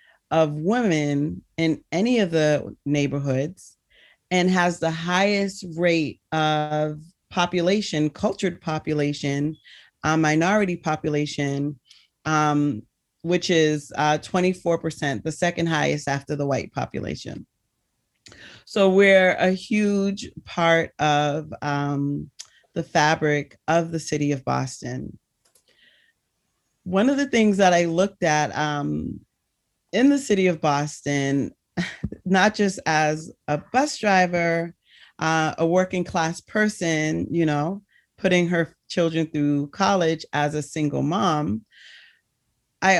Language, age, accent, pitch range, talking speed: English, 30-49, American, 150-185 Hz, 115 wpm